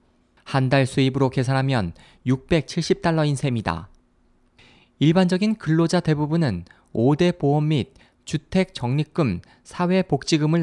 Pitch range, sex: 120-165 Hz, male